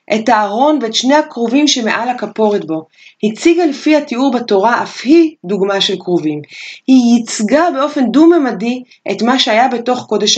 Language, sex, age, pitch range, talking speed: Hebrew, female, 30-49, 200-285 Hz, 145 wpm